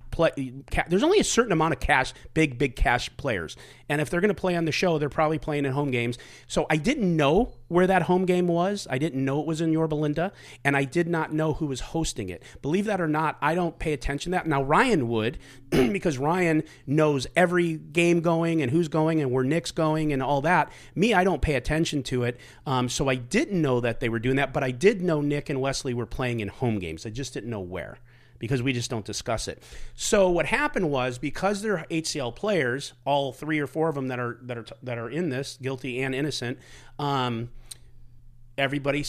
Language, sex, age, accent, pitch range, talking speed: English, male, 40-59, American, 120-155 Hz, 230 wpm